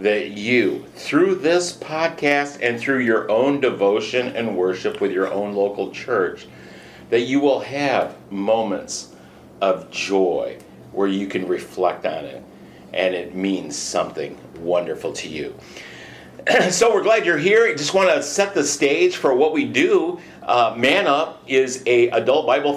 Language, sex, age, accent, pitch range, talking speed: English, male, 50-69, American, 115-190 Hz, 160 wpm